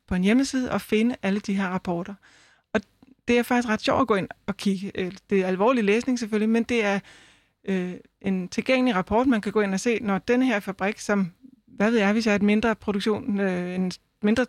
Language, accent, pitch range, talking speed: Danish, native, 195-230 Hz, 205 wpm